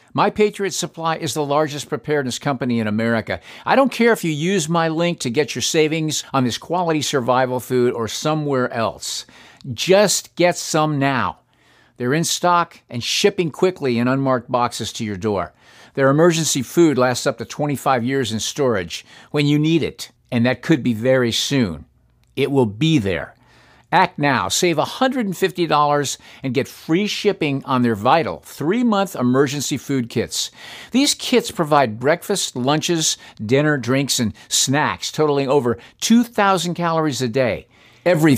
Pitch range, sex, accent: 125-170 Hz, male, American